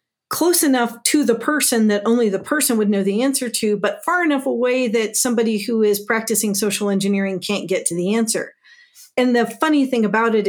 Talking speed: 205 wpm